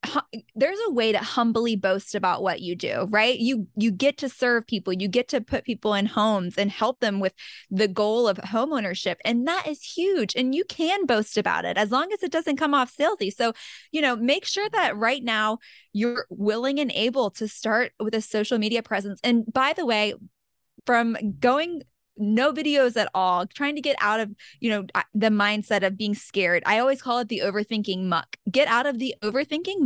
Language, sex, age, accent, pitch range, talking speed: English, female, 20-39, American, 210-280 Hz, 205 wpm